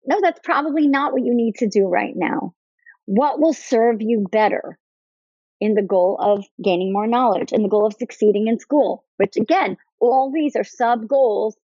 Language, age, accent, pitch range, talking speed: English, 40-59, American, 200-255 Hz, 190 wpm